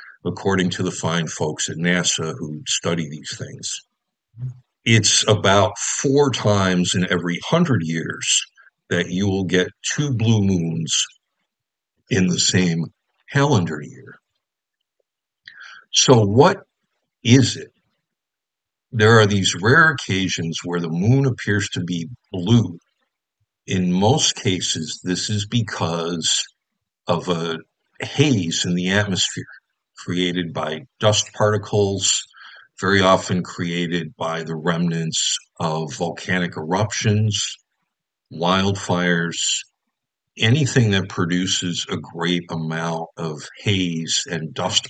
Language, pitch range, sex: English, 85-110 Hz, male